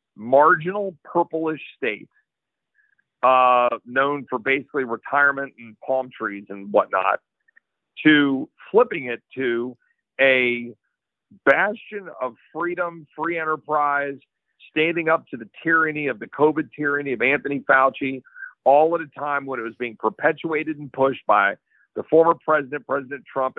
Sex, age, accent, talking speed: male, 50-69, American, 130 wpm